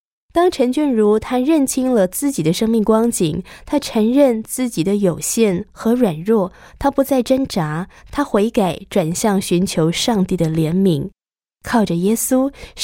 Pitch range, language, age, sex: 175-225 Hz, Chinese, 20-39, female